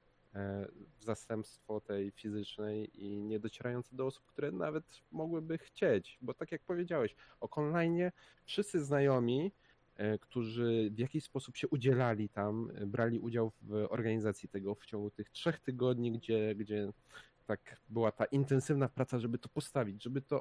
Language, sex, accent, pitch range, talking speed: Polish, male, native, 110-140 Hz, 145 wpm